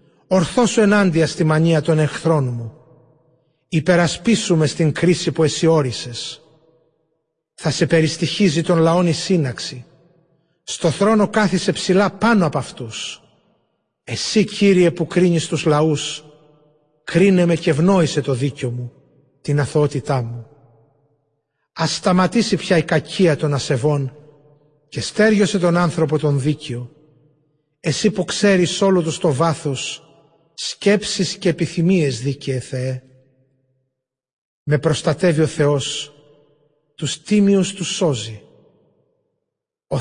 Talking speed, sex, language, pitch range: 115 wpm, male, Greek, 140-170 Hz